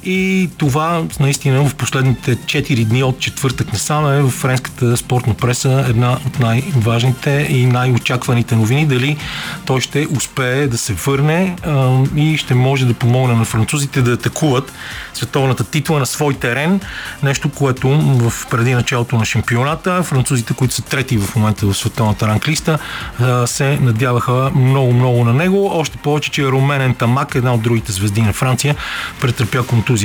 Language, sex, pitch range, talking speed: Bulgarian, male, 120-145 Hz, 155 wpm